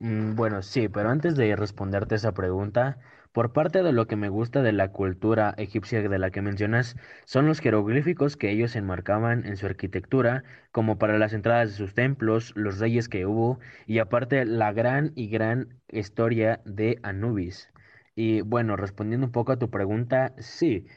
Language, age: English, 20-39